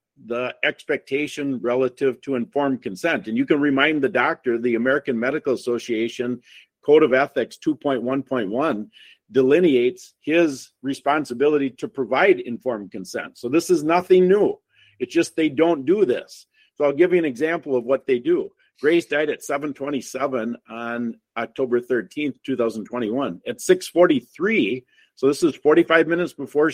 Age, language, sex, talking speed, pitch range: 50-69, English, male, 145 wpm, 135-190 Hz